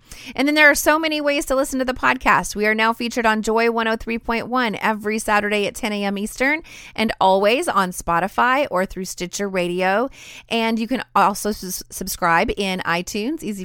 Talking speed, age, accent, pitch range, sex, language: 180 wpm, 30-49, American, 190-240 Hz, female, English